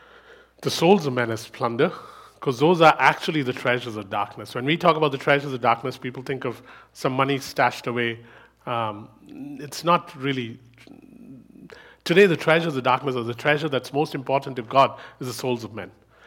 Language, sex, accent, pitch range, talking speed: English, male, Indian, 115-150 Hz, 190 wpm